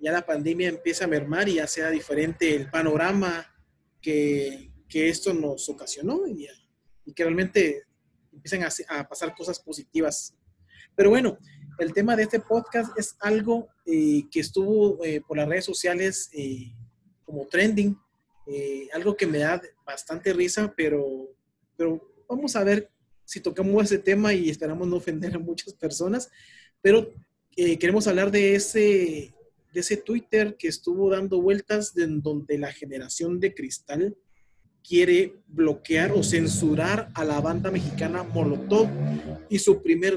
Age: 30-49